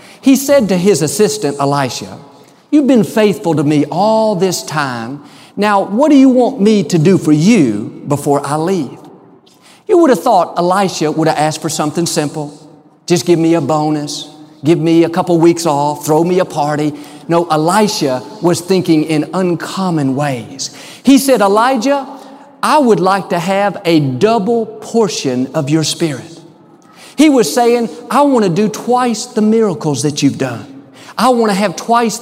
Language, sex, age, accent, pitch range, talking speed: English, male, 50-69, American, 155-220 Hz, 170 wpm